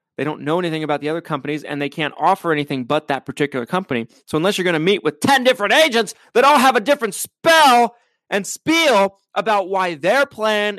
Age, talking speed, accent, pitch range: 20-39, 215 wpm, American, 125-190 Hz